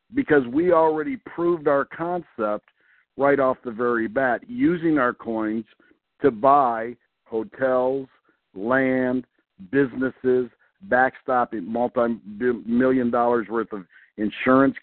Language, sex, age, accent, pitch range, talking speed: English, male, 50-69, American, 120-145 Hz, 100 wpm